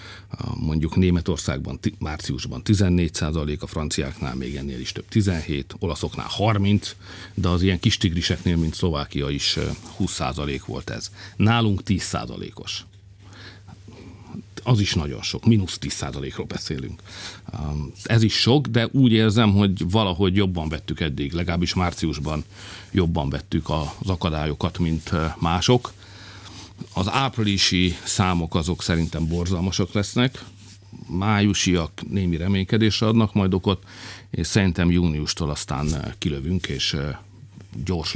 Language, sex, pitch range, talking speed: Hungarian, male, 85-100 Hz, 115 wpm